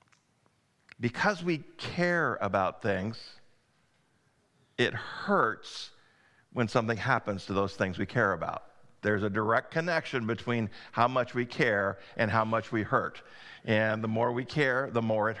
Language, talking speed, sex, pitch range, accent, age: English, 150 wpm, male, 100-120 Hz, American, 50-69